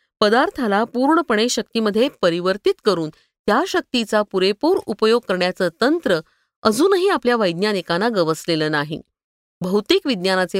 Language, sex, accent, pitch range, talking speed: Marathi, female, native, 180-275 Hz, 100 wpm